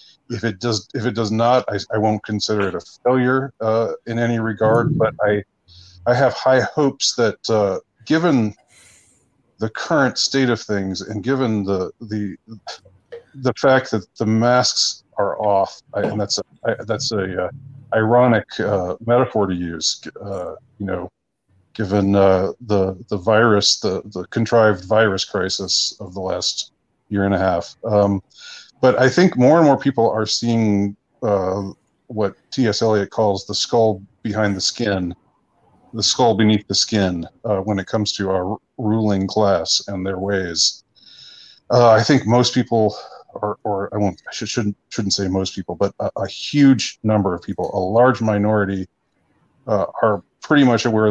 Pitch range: 100-115 Hz